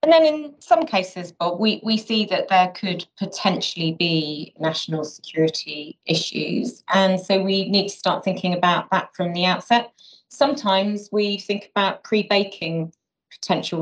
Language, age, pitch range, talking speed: English, 30-49, 165-200 Hz, 150 wpm